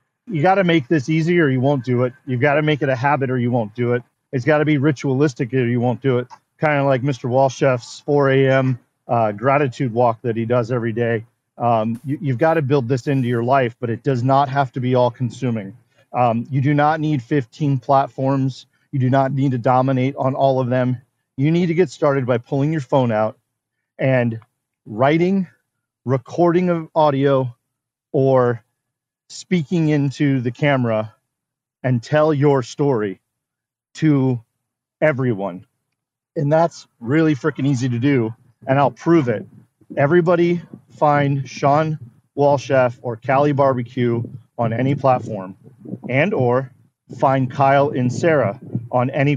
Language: English